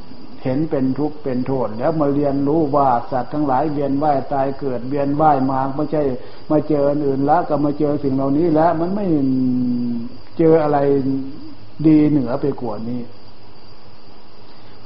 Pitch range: 105-150 Hz